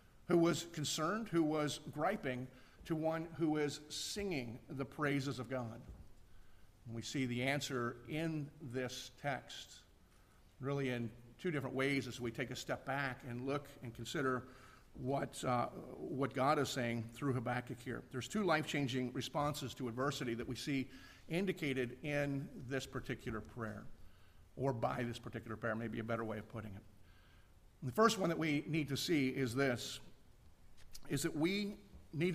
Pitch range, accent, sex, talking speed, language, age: 120-145 Hz, American, male, 160 wpm, English, 50-69